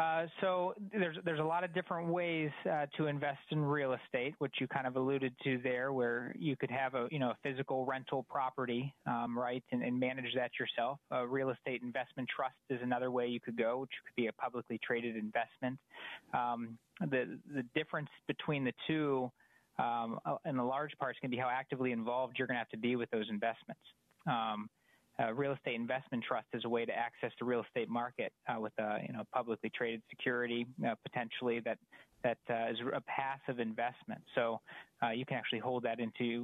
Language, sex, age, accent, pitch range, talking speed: English, male, 20-39, American, 120-140 Hz, 210 wpm